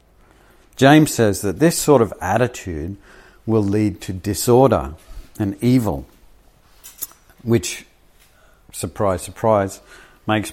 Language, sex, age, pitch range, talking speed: English, male, 50-69, 95-115 Hz, 95 wpm